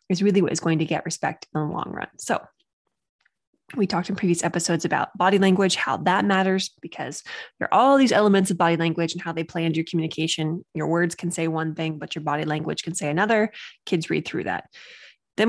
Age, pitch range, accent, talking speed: 20-39, 165-205 Hz, American, 225 wpm